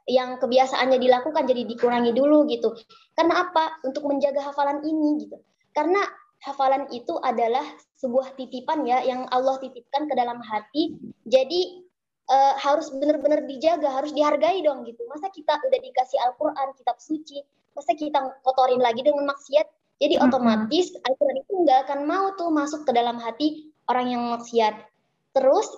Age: 20-39